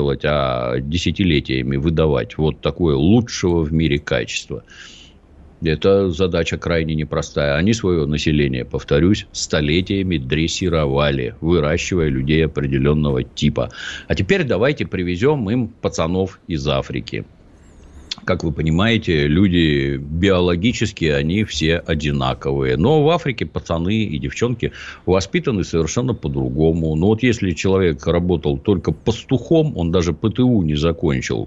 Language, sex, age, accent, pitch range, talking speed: Russian, male, 50-69, native, 75-95 Hz, 115 wpm